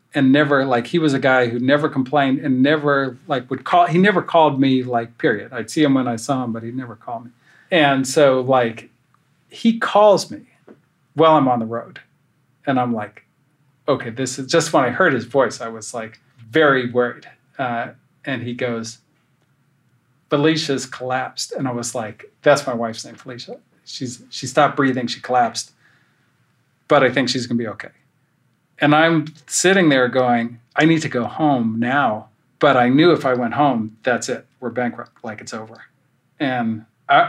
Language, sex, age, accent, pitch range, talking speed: English, male, 40-59, American, 125-150 Hz, 190 wpm